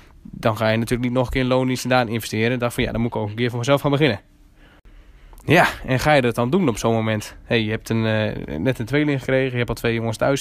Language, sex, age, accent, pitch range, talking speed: Dutch, male, 10-29, Dutch, 110-140 Hz, 295 wpm